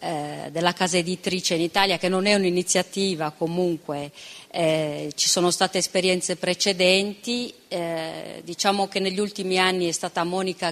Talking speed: 140 wpm